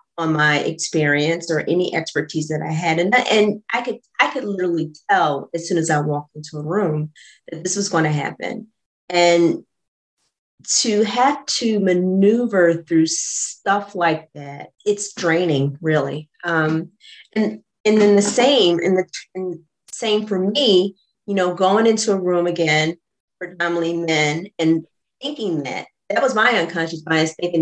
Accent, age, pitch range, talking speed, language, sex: American, 30-49, 155-200 Hz, 160 wpm, English, female